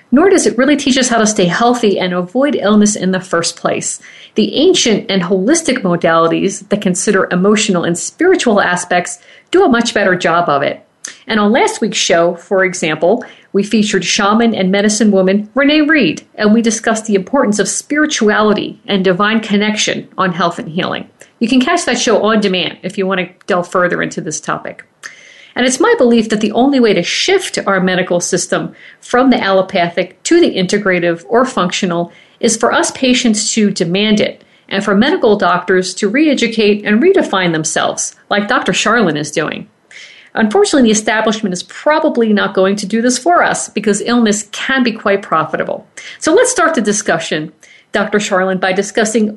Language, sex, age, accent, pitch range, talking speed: English, female, 50-69, American, 190-245 Hz, 180 wpm